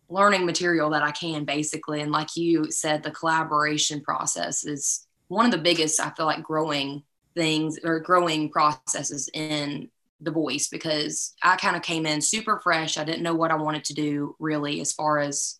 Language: English